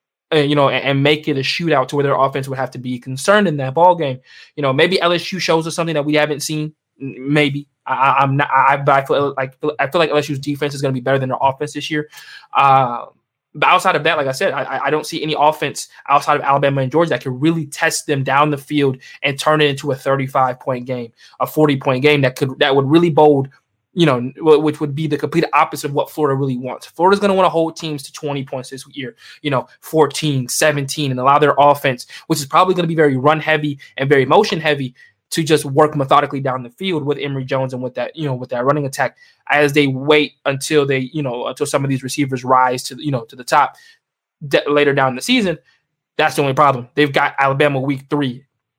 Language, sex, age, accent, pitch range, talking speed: English, male, 20-39, American, 130-150 Hz, 245 wpm